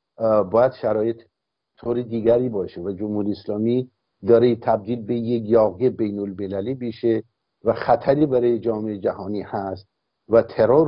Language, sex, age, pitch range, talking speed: Persian, male, 60-79, 110-135 Hz, 125 wpm